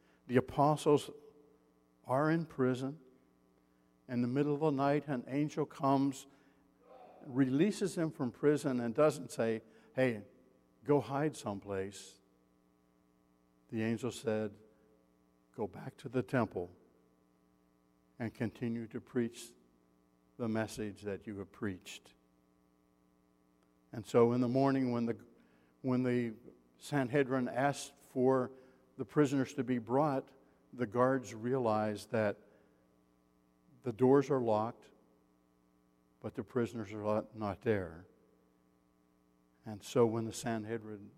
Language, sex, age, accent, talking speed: English, male, 60-79, American, 115 wpm